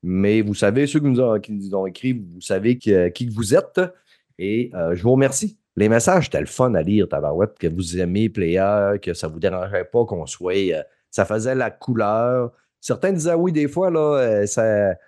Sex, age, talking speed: male, 30-49, 225 wpm